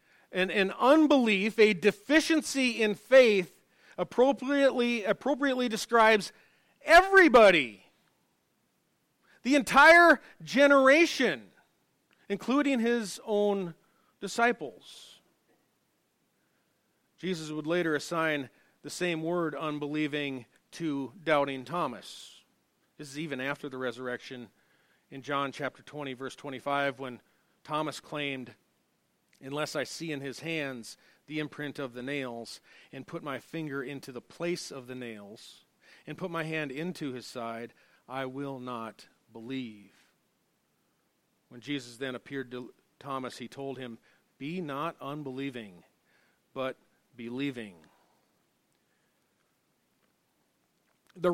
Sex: male